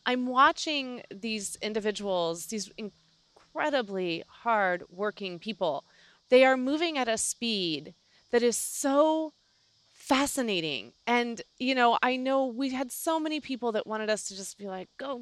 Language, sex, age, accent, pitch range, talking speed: English, female, 30-49, American, 190-250 Hz, 140 wpm